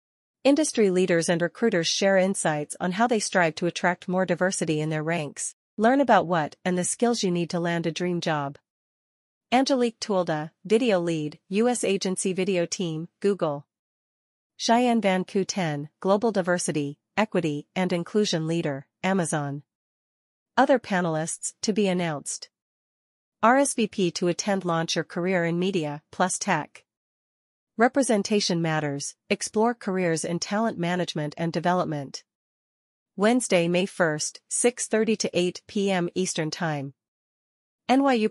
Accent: American